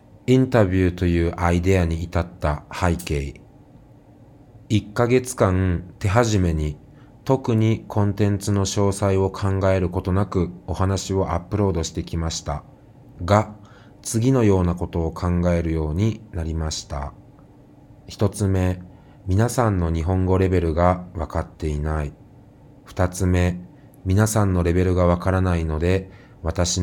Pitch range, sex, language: 85-105 Hz, male, Japanese